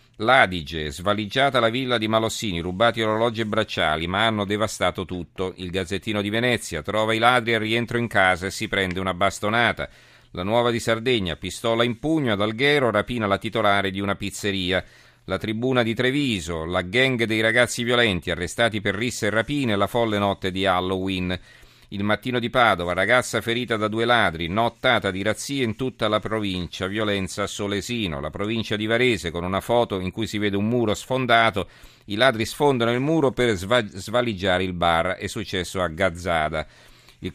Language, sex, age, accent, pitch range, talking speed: Italian, male, 40-59, native, 95-115 Hz, 180 wpm